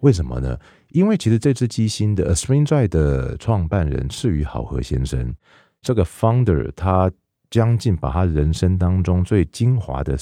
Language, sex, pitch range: Chinese, male, 75-105 Hz